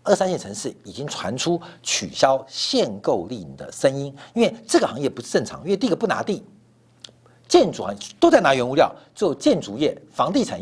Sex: male